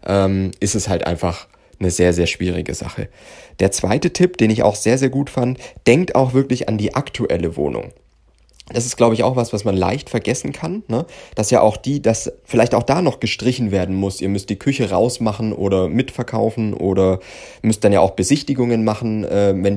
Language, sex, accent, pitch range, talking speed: German, male, German, 95-120 Hz, 200 wpm